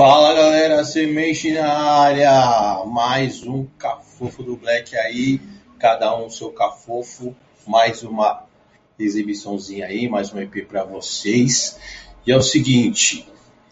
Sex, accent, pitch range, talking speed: male, Brazilian, 105-140 Hz, 125 wpm